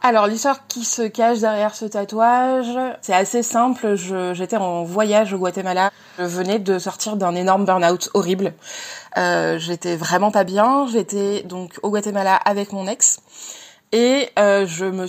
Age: 20-39